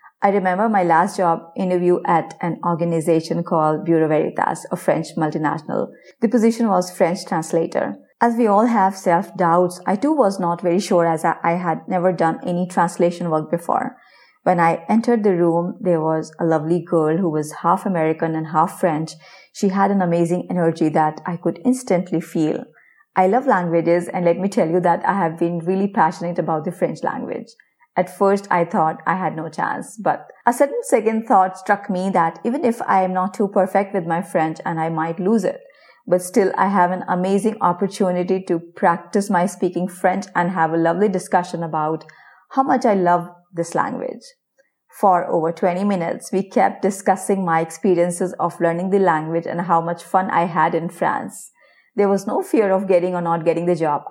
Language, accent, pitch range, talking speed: English, Indian, 170-195 Hz, 190 wpm